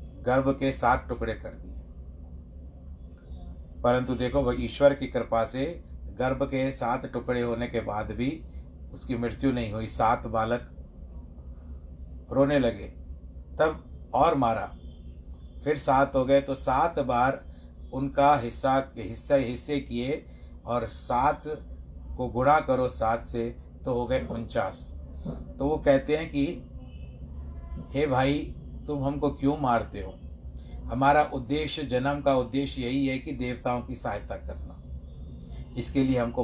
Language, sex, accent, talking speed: Hindi, male, native, 135 wpm